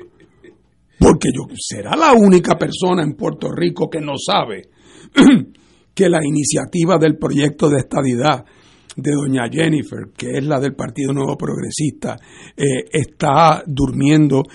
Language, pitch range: Spanish, 135-195 Hz